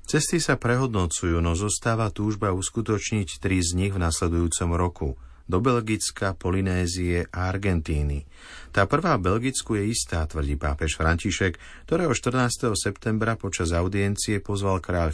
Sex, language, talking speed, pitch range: male, Slovak, 135 wpm, 85-110 Hz